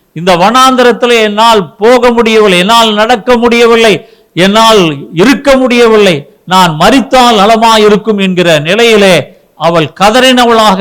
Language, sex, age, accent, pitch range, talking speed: Tamil, male, 50-69, native, 160-230 Hz, 100 wpm